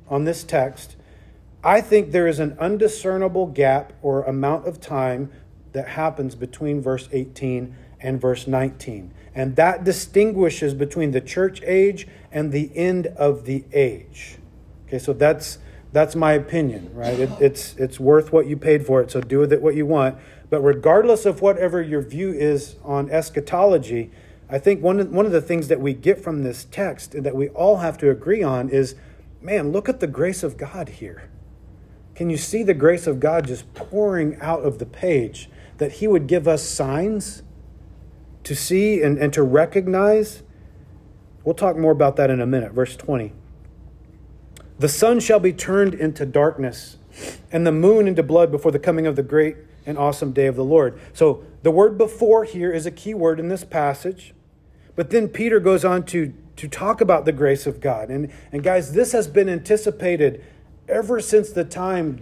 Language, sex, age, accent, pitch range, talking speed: English, male, 40-59, American, 135-180 Hz, 185 wpm